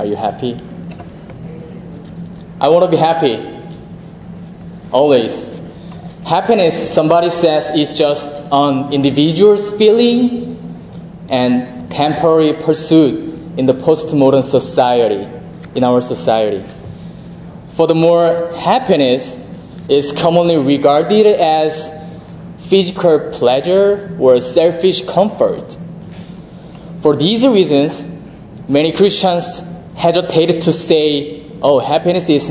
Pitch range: 145-175 Hz